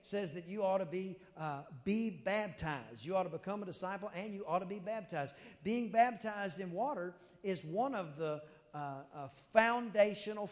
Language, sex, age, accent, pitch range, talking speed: English, male, 40-59, American, 180-240 Hz, 185 wpm